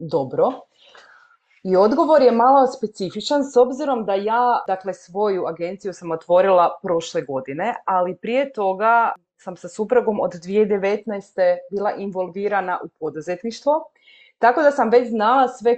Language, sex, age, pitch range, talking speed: Croatian, female, 30-49, 175-225 Hz, 135 wpm